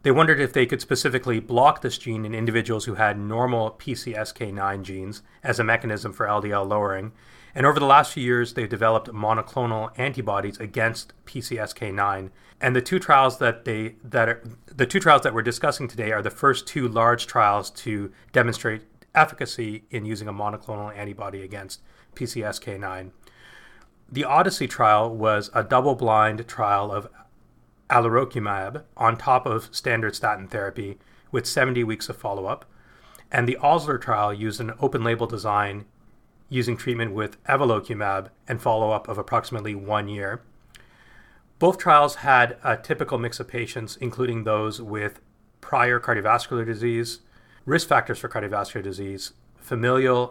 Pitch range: 105-125 Hz